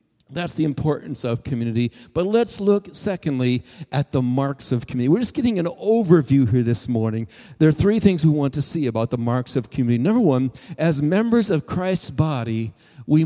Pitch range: 150-215 Hz